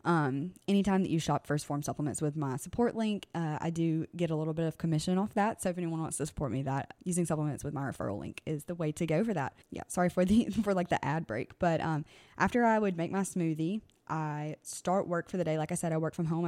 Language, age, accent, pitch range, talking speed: English, 20-39, American, 150-185 Hz, 270 wpm